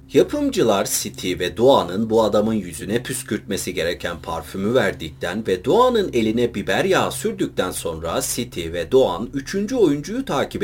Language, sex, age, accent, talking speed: Turkish, male, 40-59, native, 135 wpm